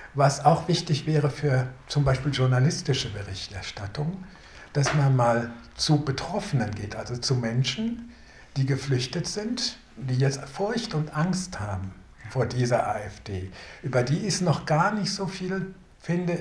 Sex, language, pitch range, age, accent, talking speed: male, German, 120-155 Hz, 60-79, German, 145 wpm